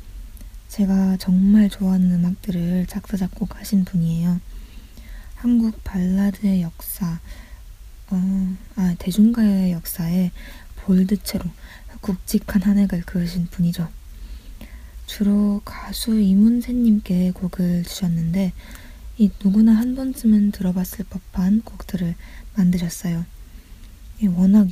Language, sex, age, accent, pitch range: Korean, female, 20-39, native, 175-205 Hz